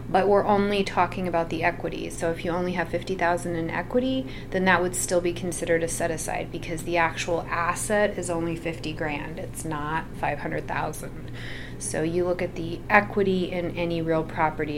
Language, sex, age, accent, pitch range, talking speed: English, female, 30-49, American, 155-180 Hz, 185 wpm